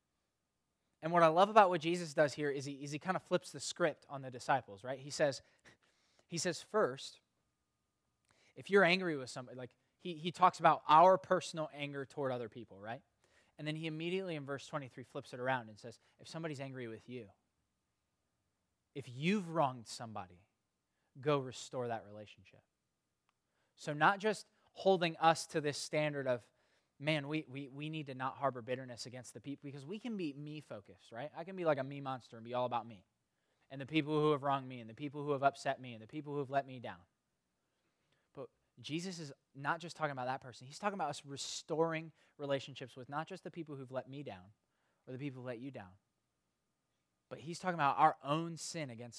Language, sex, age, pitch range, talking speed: English, male, 20-39, 125-155 Hz, 205 wpm